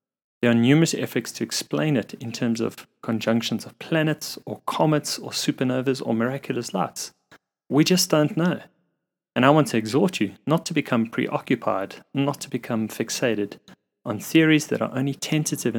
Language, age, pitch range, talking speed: English, 30-49, 115-145 Hz, 165 wpm